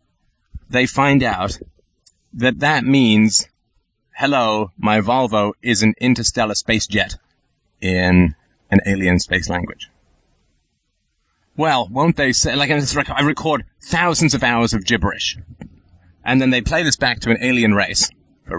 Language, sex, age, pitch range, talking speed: English, male, 30-49, 95-130 Hz, 135 wpm